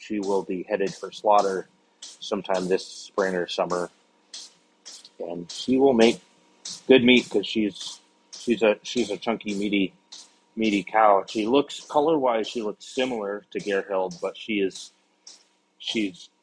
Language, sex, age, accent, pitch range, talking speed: English, male, 30-49, American, 95-110 Hz, 140 wpm